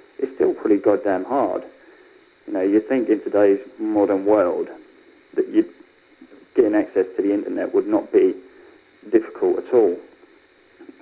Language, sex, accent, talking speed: English, male, British, 135 wpm